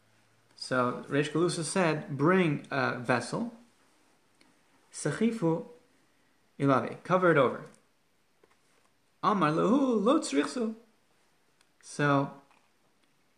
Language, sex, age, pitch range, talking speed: English, male, 30-49, 135-190 Hz, 70 wpm